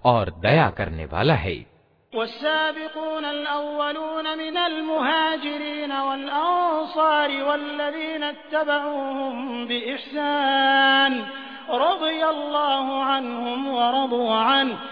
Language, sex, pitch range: Hindi, male, 245-295 Hz